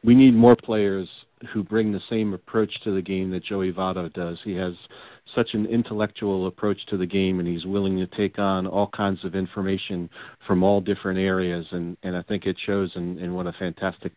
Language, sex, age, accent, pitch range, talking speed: English, male, 40-59, American, 95-110 Hz, 210 wpm